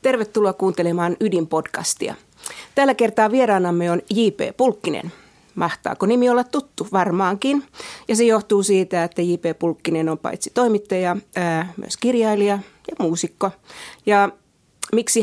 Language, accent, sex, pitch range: Finnish, native, female, 175-220 Hz